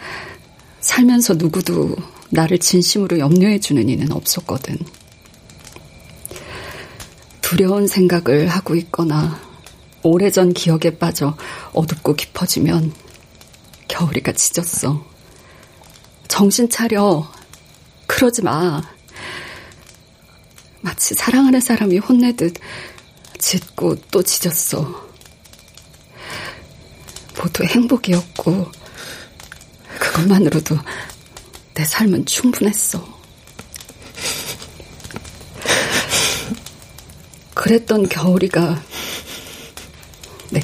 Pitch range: 150-200 Hz